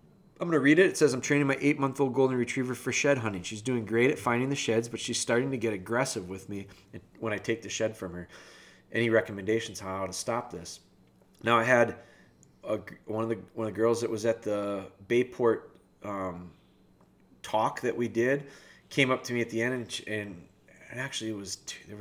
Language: English